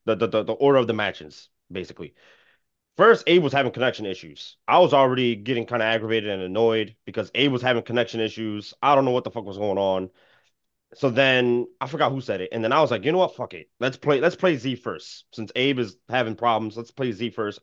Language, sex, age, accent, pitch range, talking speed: English, male, 30-49, American, 110-135 Hz, 240 wpm